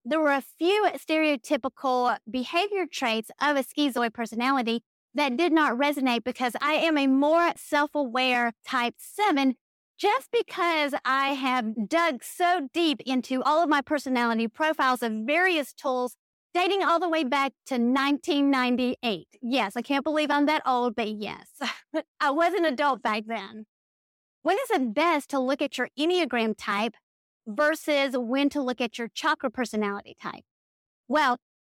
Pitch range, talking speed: 240-300 Hz, 155 wpm